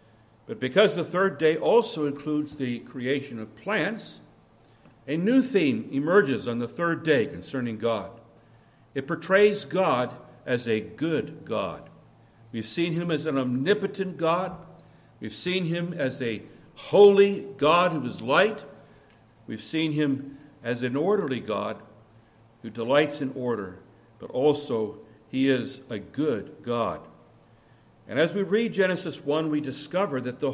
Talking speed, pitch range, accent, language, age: 145 wpm, 125-190 Hz, American, English, 60-79